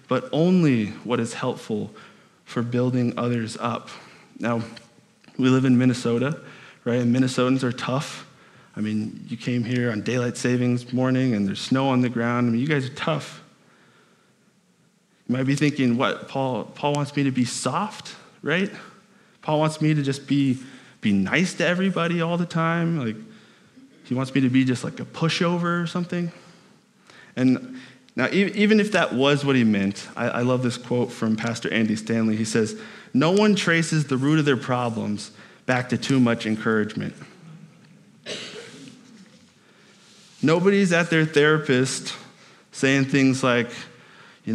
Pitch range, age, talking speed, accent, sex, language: 120-165 Hz, 20-39, 160 wpm, American, male, English